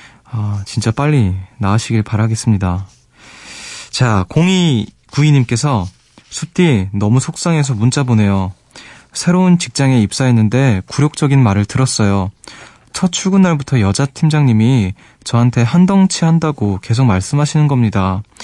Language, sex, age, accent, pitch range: Korean, male, 20-39, native, 105-145 Hz